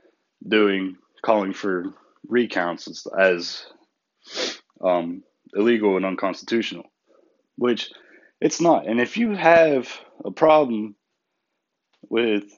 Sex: male